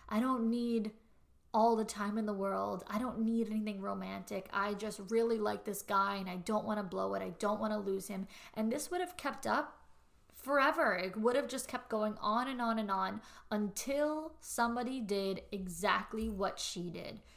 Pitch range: 195-235 Hz